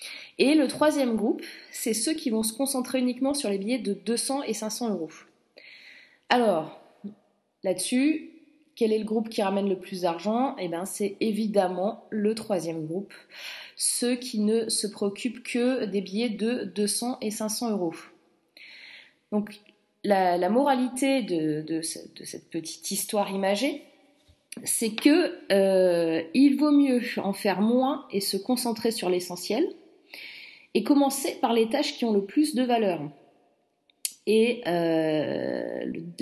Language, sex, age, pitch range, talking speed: French, female, 30-49, 195-260 Hz, 140 wpm